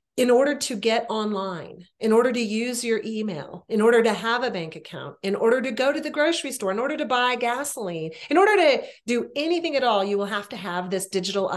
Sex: female